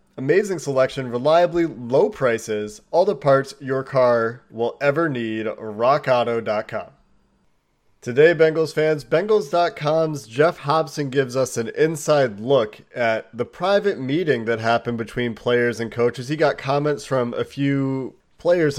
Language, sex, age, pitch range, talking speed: English, male, 30-49, 115-140 Hz, 135 wpm